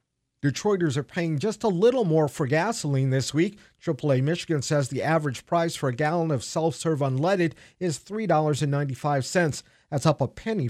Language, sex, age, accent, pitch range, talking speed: English, male, 50-69, American, 135-175 Hz, 165 wpm